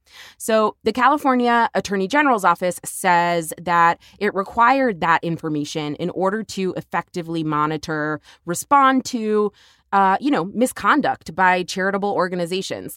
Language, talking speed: English, 120 wpm